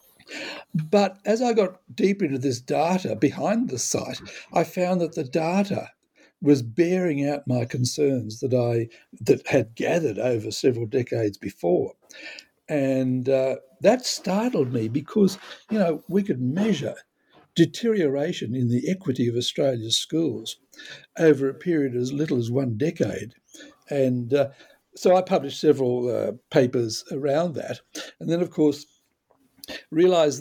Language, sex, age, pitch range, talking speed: English, male, 60-79, 125-170 Hz, 140 wpm